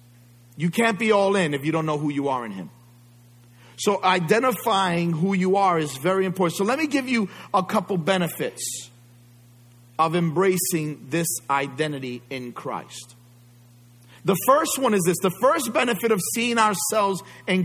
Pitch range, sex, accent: 120-205 Hz, male, American